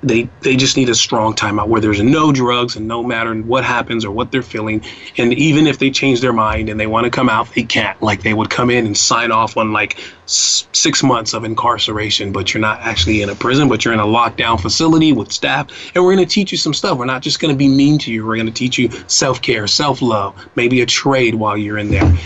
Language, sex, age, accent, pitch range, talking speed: English, male, 30-49, American, 110-140 Hz, 255 wpm